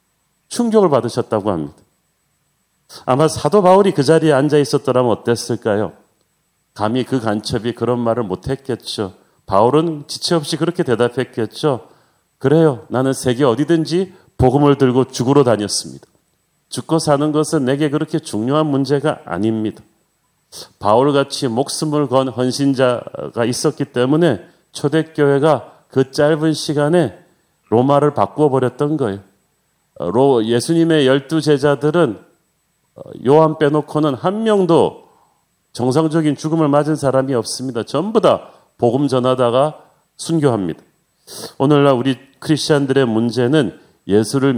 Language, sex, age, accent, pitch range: Korean, male, 40-59, native, 120-155 Hz